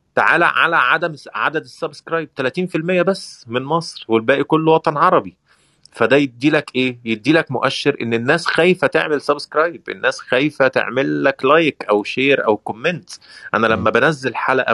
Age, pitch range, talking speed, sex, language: 30-49, 115-165 Hz, 150 wpm, male, Arabic